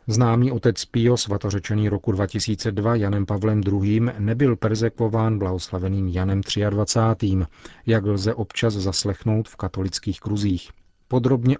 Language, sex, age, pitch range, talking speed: Czech, male, 40-59, 100-115 Hz, 115 wpm